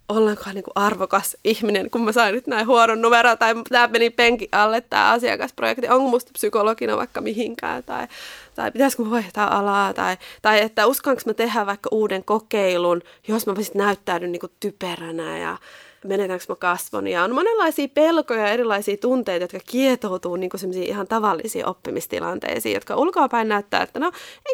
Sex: female